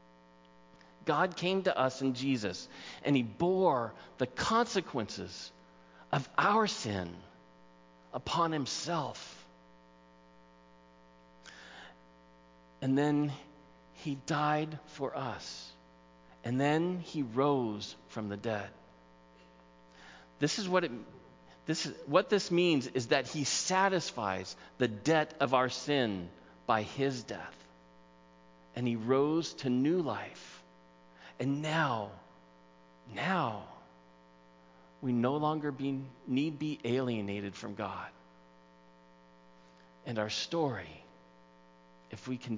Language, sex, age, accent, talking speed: English, male, 40-59, American, 105 wpm